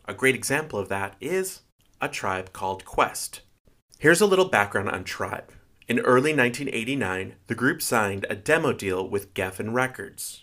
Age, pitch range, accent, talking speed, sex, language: 30-49, 95-125 Hz, American, 160 wpm, male, English